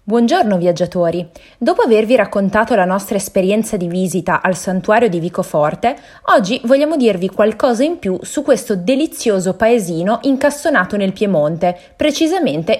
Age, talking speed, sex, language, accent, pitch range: 20-39, 130 wpm, female, Italian, native, 180-255 Hz